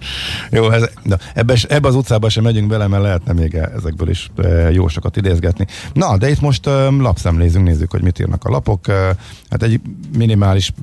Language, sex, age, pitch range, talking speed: Hungarian, male, 50-69, 80-100 Hz, 195 wpm